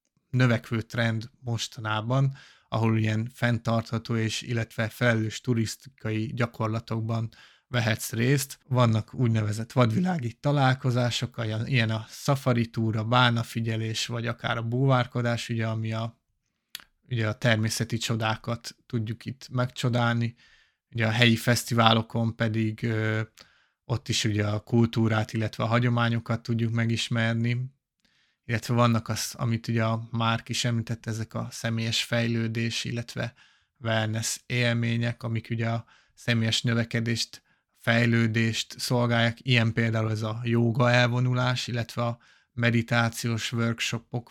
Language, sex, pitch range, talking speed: Hungarian, male, 115-125 Hz, 115 wpm